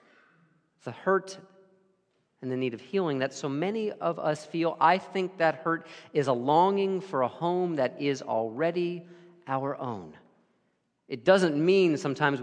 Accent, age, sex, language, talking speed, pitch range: American, 40-59, male, English, 155 wpm, 135-180 Hz